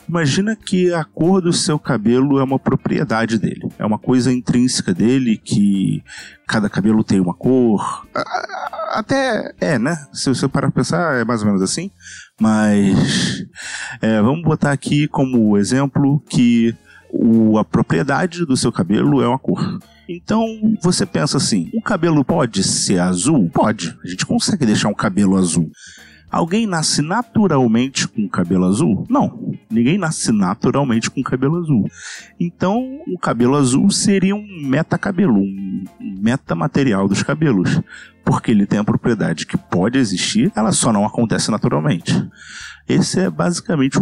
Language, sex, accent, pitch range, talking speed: Portuguese, male, Brazilian, 115-190 Hz, 155 wpm